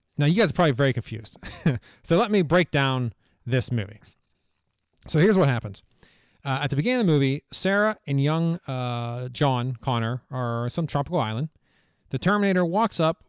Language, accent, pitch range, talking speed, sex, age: English, American, 115-155 Hz, 180 wpm, male, 30-49